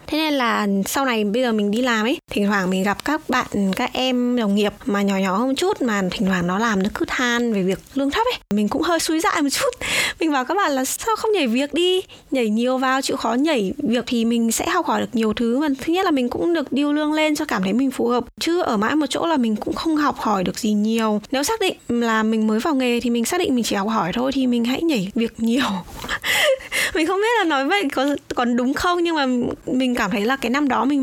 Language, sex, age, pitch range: Vietnamese, female, 10-29, 225-300 Hz